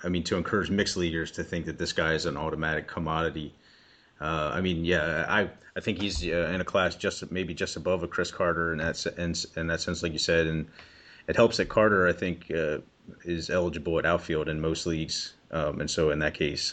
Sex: male